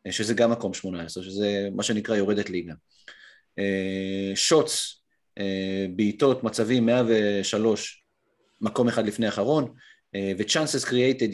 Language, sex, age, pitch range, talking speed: Hebrew, male, 30-49, 95-120 Hz, 110 wpm